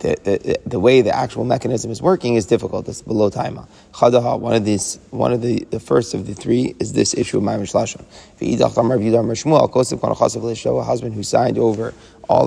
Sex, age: male, 30-49